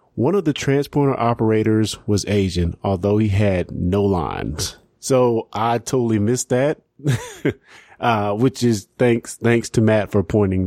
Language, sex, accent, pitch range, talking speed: English, male, American, 105-135 Hz, 145 wpm